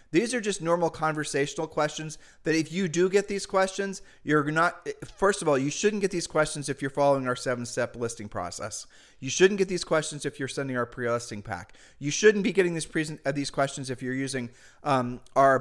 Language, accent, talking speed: English, American, 210 wpm